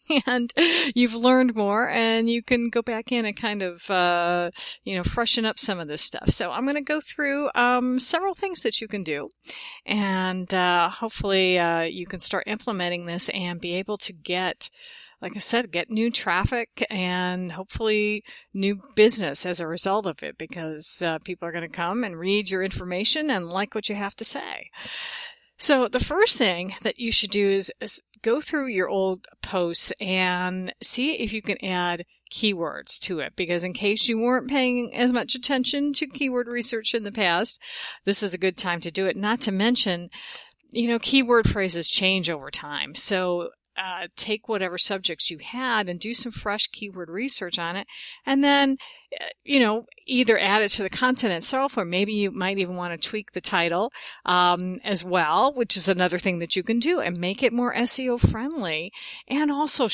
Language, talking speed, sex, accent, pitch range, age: English, 195 wpm, female, American, 185-245 Hz, 40-59